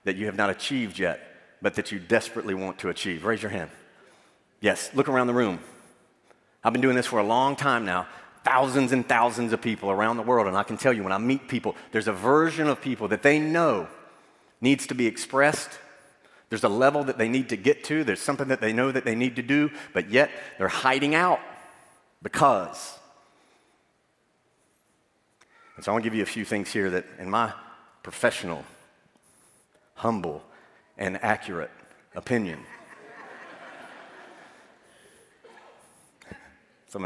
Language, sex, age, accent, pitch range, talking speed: English, male, 40-59, American, 105-130 Hz, 170 wpm